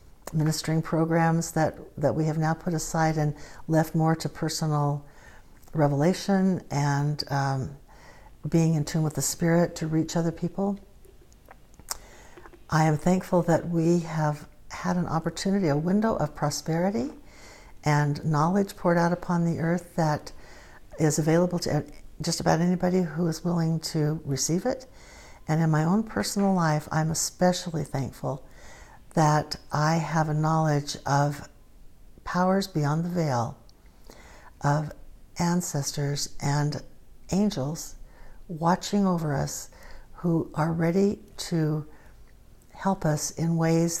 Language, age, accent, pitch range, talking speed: English, 60-79, American, 145-170 Hz, 130 wpm